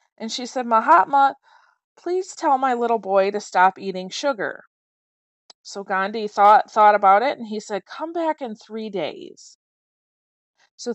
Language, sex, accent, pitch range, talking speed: English, female, American, 200-260 Hz, 155 wpm